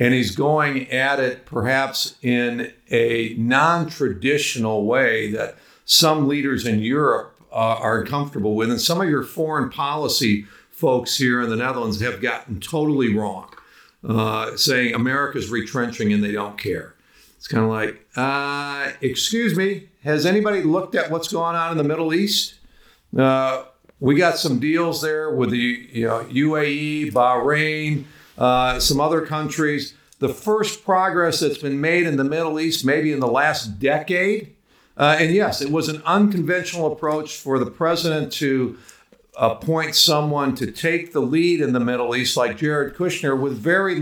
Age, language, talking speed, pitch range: 50-69, Dutch, 160 wpm, 130-165 Hz